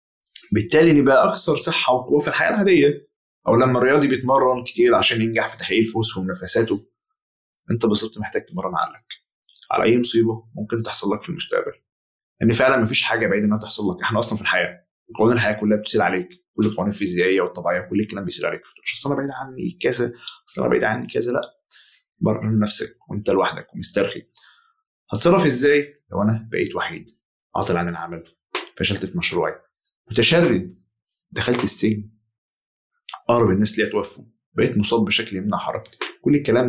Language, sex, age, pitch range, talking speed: Arabic, male, 20-39, 105-135 Hz, 165 wpm